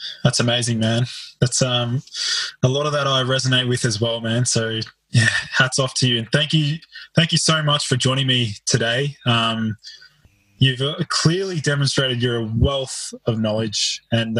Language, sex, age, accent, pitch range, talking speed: English, male, 20-39, Australian, 115-135 Hz, 170 wpm